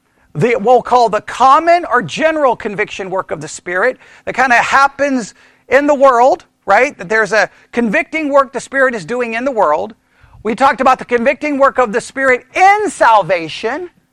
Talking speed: 180 wpm